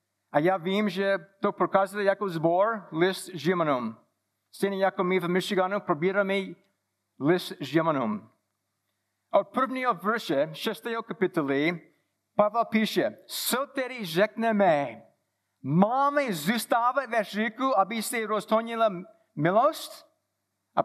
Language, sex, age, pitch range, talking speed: Czech, male, 50-69, 185-230 Hz, 100 wpm